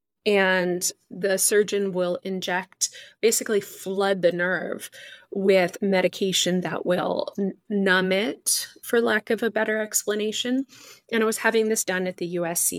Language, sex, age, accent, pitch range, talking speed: English, female, 30-49, American, 185-215 Hz, 140 wpm